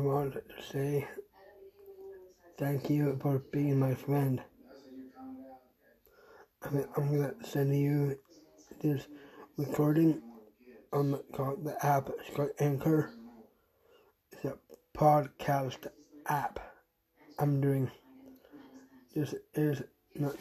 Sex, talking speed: male, 95 wpm